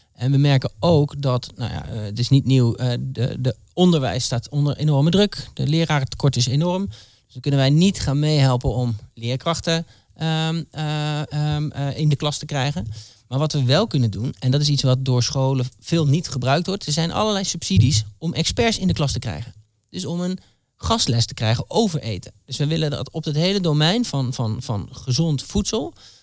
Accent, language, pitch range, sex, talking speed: Dutch, Dutch, 125-165 Hz, male, 200 wpm